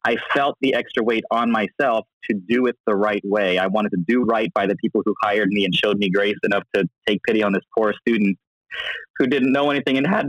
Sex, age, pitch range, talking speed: male, 20-39, 105-130 Hz, 245 wpm